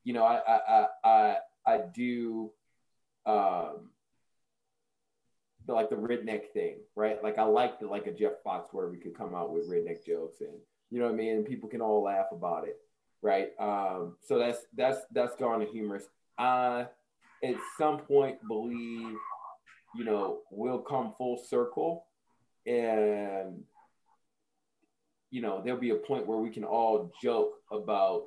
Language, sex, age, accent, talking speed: English, male, 20-39, American, 165 wpm